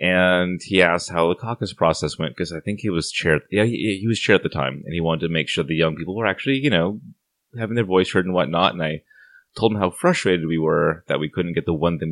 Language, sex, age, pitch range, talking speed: English, male, 30-49, 75-95 Hz, 275 wpm